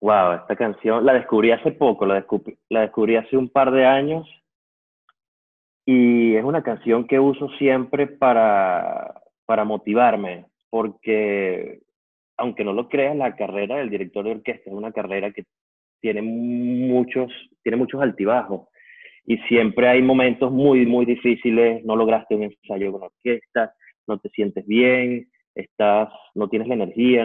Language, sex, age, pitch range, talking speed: English, male, 30-49, 110-130 Hz, 150 wpm